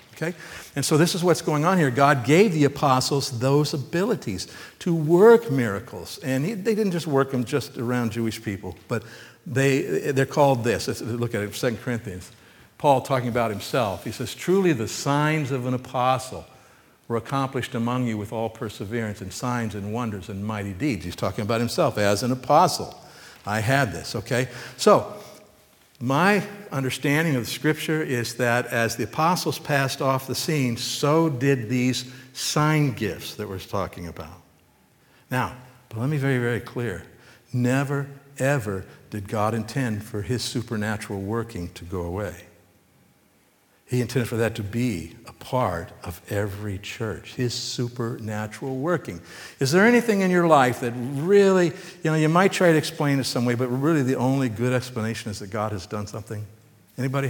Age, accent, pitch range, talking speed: 60-79, American, 110-145 Hz, 175 wpm